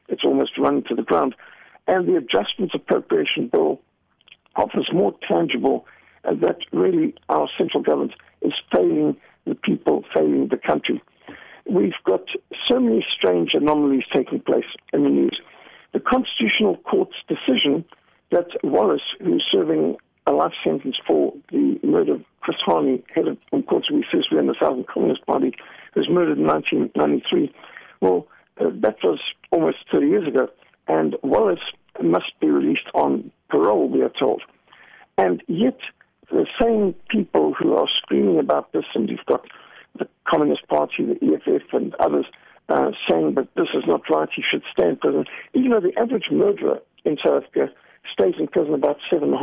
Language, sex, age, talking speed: English, male, 60-79, 170 wpm